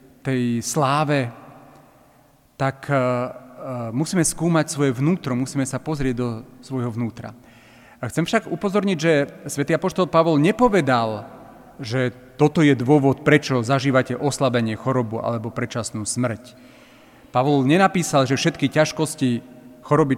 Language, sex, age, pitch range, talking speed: Slovak, male, 40-59, 125-150 Hz, 115 wpm